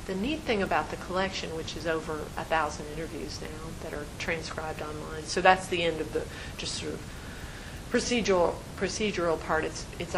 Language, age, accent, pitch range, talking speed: English, 40-59, American, 155-175 Hz, 185 wpm